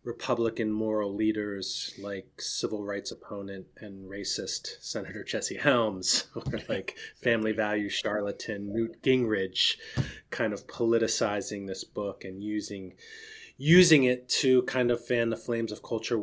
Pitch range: 100-135 Hz